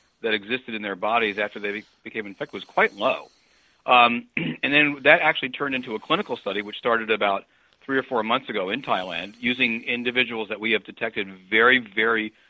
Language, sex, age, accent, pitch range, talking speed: English, male, 40-59, American, 100-120 Hz, 190 wpm